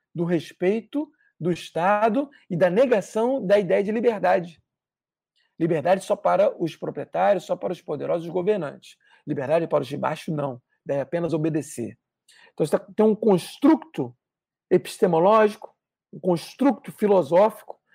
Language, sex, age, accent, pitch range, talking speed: Portuguese, male, 40-59, Brazilian, 170-225 Hz, 125 wpm